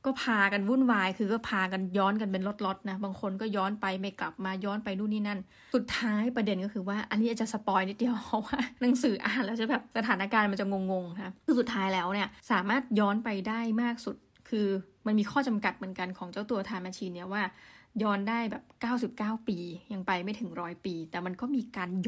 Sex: female